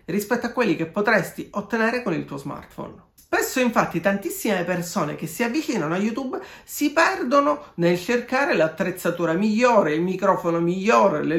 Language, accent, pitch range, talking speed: Italian, native, 180-255 Hz, 155 wpm